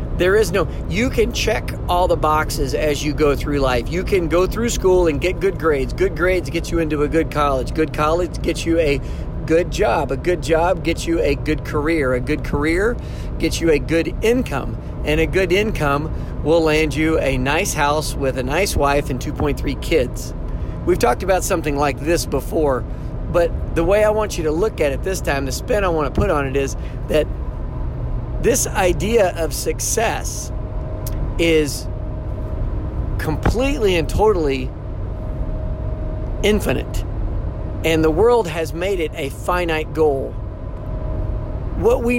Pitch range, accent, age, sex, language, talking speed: 130-165 Hz, American, 40-59, male, English, 170 wpm